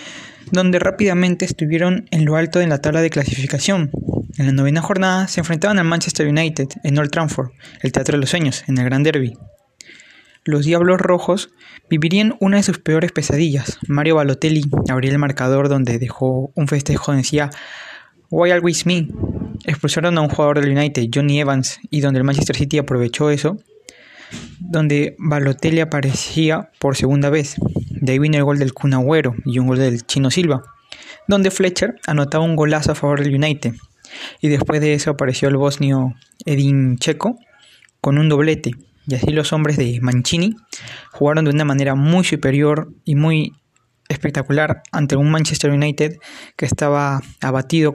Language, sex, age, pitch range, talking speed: Spanish, male, 20-39, 140-165 Hz, 165 wpm